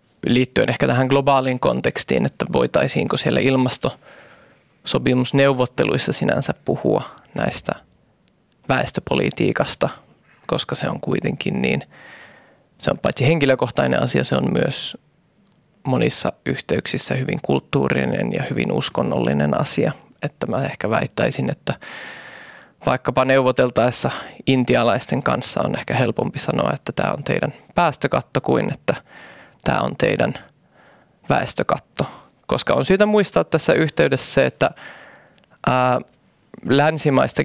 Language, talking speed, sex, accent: Finnish, 105 wpm, male, native